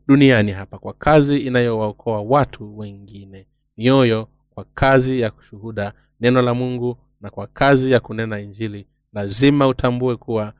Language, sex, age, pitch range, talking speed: Swahili, male, 30-49, 110-130 Hz, 135 wpm